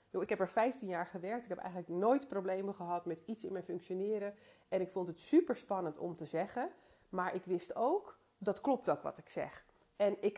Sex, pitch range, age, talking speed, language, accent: female, 175-225 Hz, 30-49, 220 wpm, Dutch, Dutch